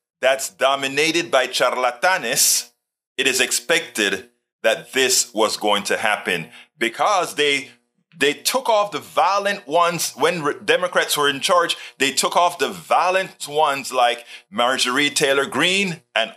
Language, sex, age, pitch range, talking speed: English, male, 30-49, 120-180 Hz, 135 wpm